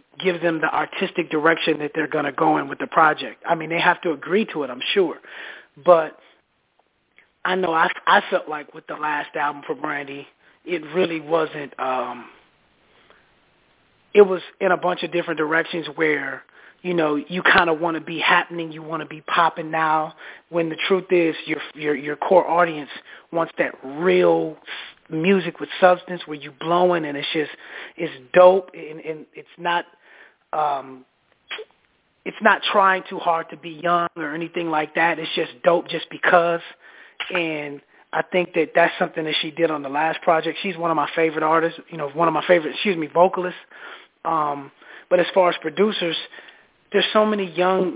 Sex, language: male, English